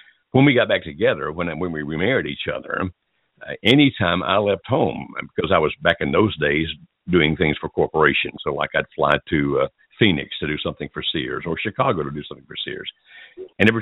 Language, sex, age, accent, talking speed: English, male, 60-79, American, 210 wpm